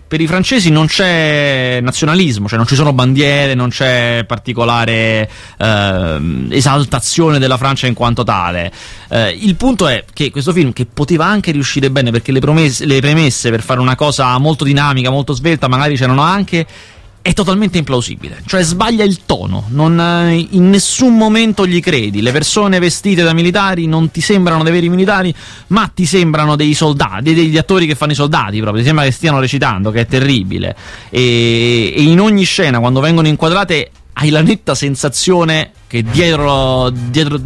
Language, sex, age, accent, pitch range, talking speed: Italian, male, 30-49, native, 125-165 Hz, 170 wpm